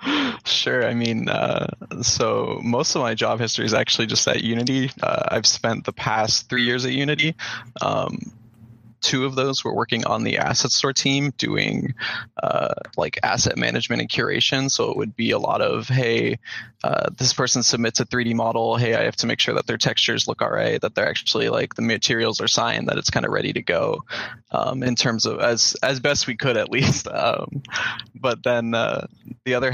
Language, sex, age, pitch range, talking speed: English, male, 20-39, 115-130 Hz, 205 wpm